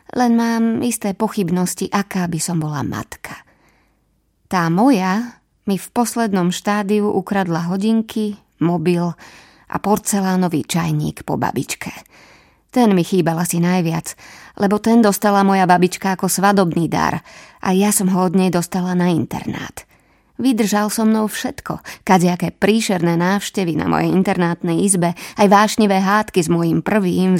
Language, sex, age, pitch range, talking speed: Slovak, female, 20-39, 175-210 Hz, 140 wpm